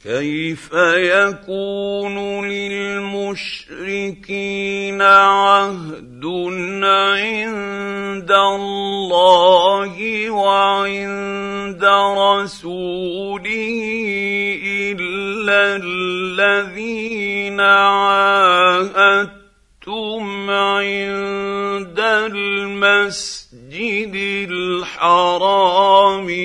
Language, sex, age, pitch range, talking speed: Arabic, male, 50-69, 175-200 Hz, 30 wpm